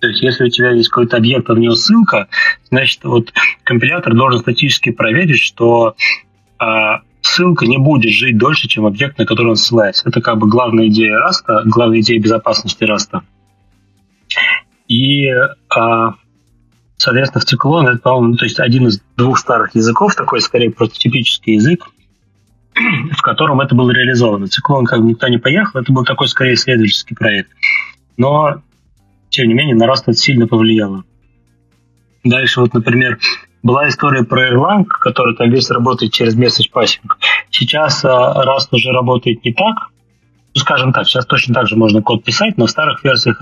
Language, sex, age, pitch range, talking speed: Russian, male, 30-49, 110-135 Hz, 165 wpm